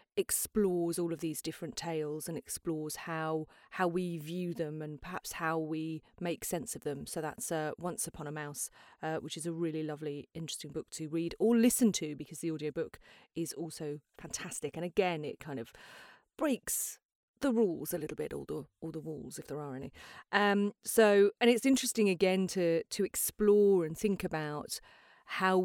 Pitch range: 160-195 Hz